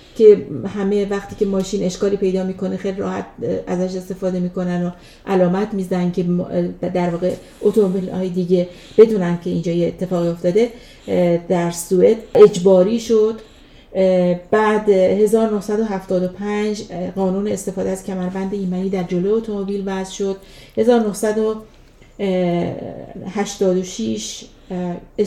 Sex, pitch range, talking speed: female, 180-220 Hz, 105 wpm